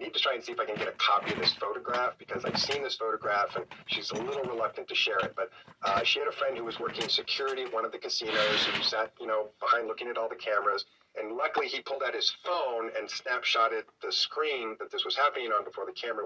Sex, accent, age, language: male, American, 40-59, English